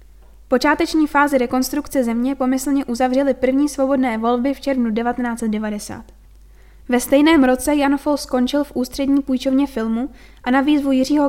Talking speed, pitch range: 135 wpm, 240-275 Hz